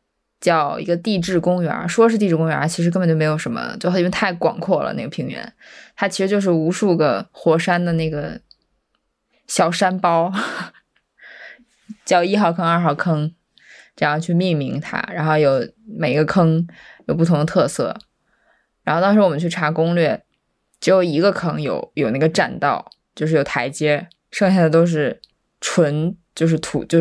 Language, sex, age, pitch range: Chinese, female, 20-39, 160-185 Hz